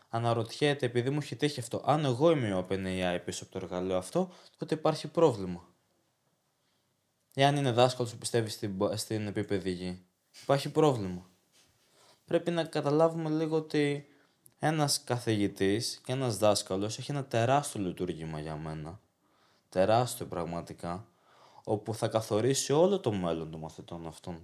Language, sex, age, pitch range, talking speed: Greek, male, 20-39, 100-150 Hz, 135 wpm